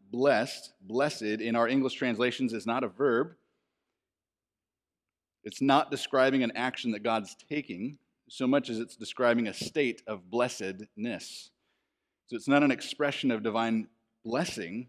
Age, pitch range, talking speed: 30-49, 110-130 Hz, 140 wpm